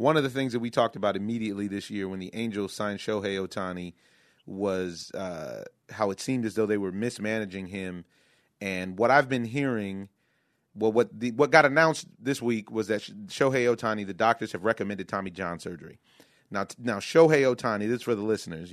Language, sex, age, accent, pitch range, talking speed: English, male, 30-49, American, 105-140 Hz, 195 wpm